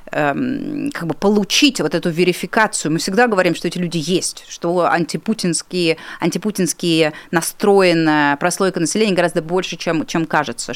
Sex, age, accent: female, 20-39, native